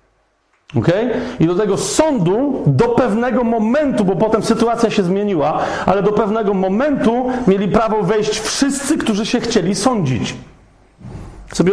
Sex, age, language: male, 40-59, Polish